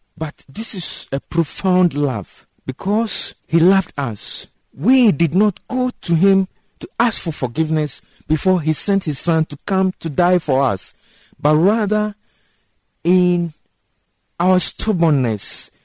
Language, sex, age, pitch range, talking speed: English, male, 50-69, 135-185 Hz, 135 wpm